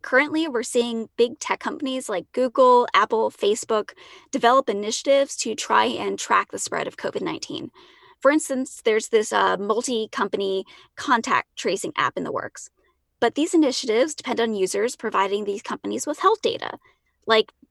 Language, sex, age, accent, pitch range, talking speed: English, female, 10-29, American, 225-340 Hz, 155 wpm